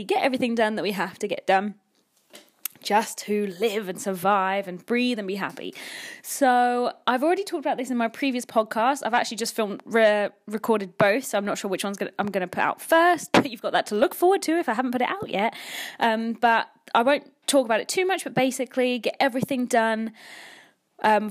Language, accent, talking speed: English, British, 225 wpm